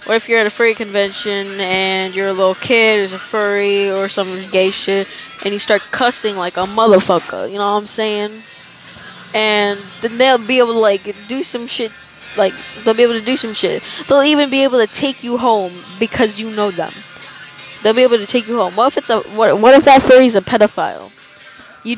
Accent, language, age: American, English, 10-29